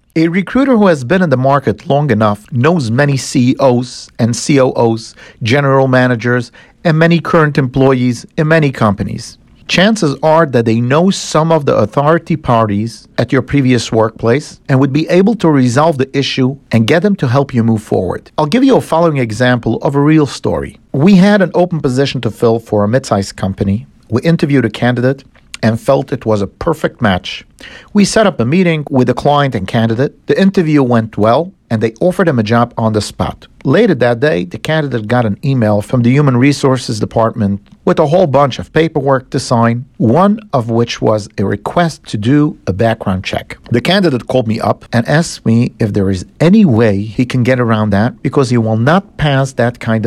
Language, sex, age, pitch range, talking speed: English, male, 50-69, 115-155 Hz, 200 wpm